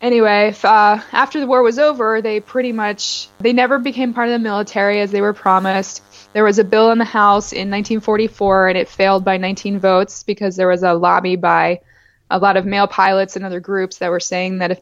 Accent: American